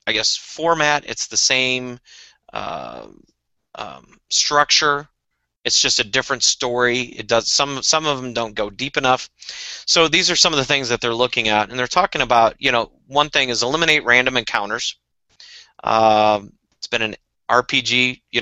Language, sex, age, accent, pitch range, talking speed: English, male, 30-49, American, 115-150 Hz, 175 wpm